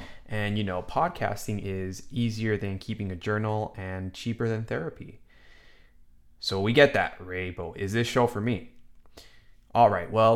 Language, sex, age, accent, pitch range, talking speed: English, male, 20-39, American, 95-115 Hz, 155 wpm